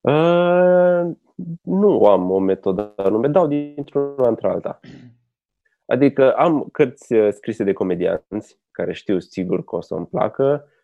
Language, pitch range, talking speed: Romanian, 95-130 Hz, 135 wpm